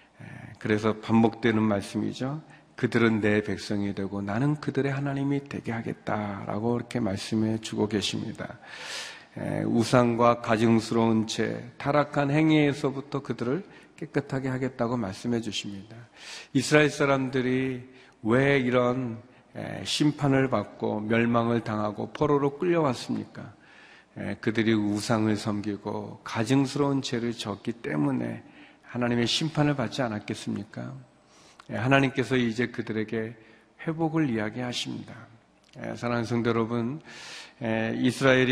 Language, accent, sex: Korean, native, male